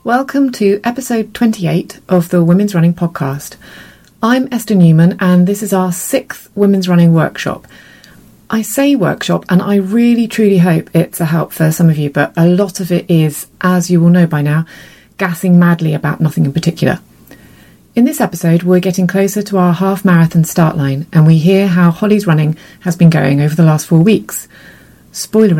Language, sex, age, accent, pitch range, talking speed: English, female, 30-49, British, 160-205 Hz, 190 wpm